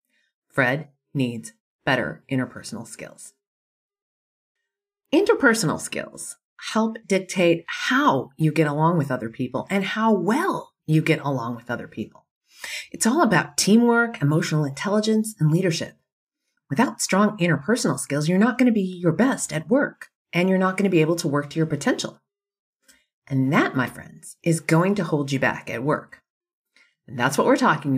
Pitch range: 140-205 Hz